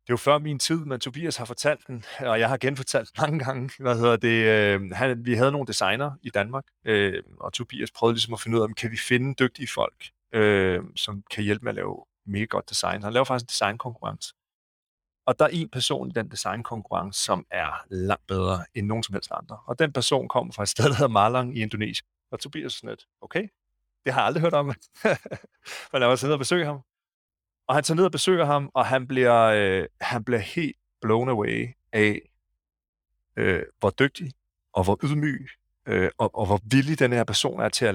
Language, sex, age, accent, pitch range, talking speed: Danish, male, 40-59, native, 105-135 Hz, 220 wpm